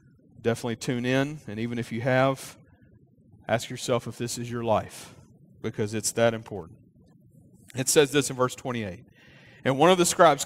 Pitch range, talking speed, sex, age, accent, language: 125-165 Hz, 170 wpm, male, 40-59, American, English